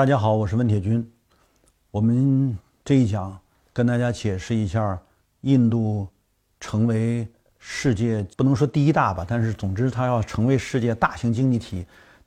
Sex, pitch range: male, 105-125 Hz